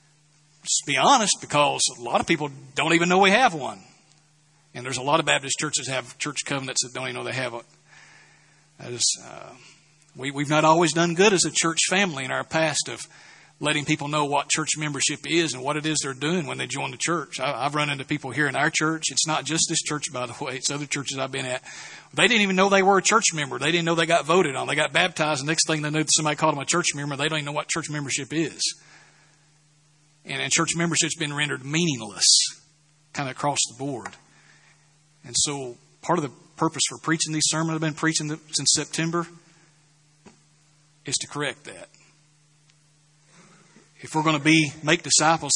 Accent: American